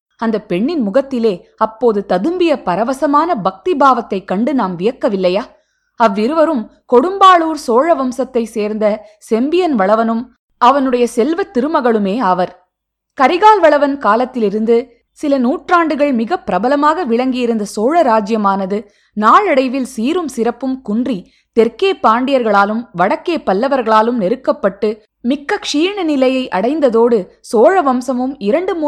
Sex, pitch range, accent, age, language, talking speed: female, 215-285 Hz, native, 20-39, Tamil, 100 wpm